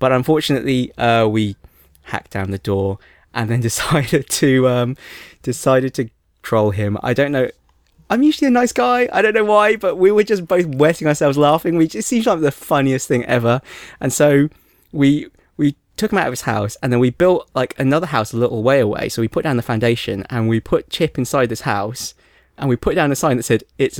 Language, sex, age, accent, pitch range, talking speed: English, male, 20-39, British, 120-170 Hz, 225 wpm